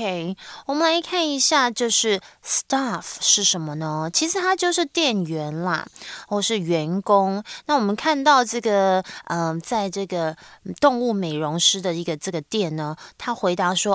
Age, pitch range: 20-39, 180-245 Hz